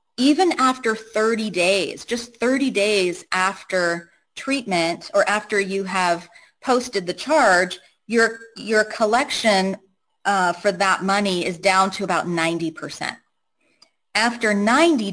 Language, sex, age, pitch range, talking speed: English, female, 30-49, 185-235 Hz, 125 wpm